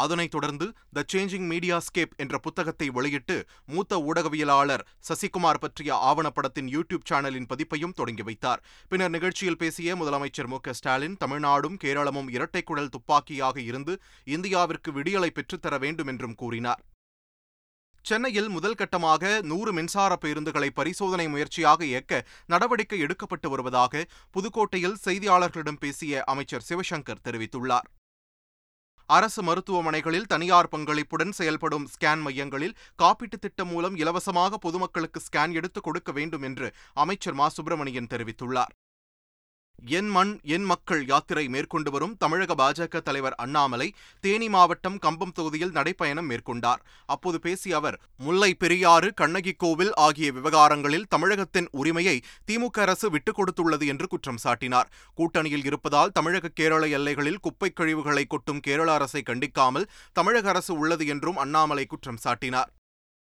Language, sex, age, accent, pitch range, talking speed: Tamil, male, 30-49, native, 140-180 Hz, 120 wpm